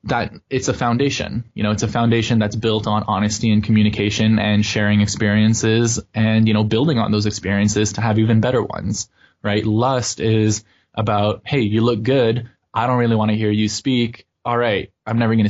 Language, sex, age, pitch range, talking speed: English, male, 20-39, 105-125 Hz, 200 wpm